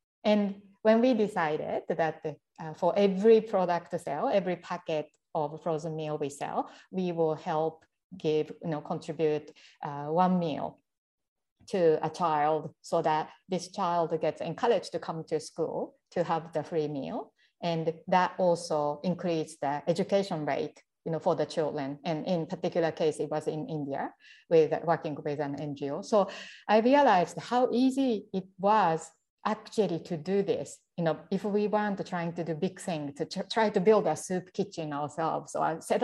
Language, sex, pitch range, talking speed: English, female, 155-200 Hz, 170 wpm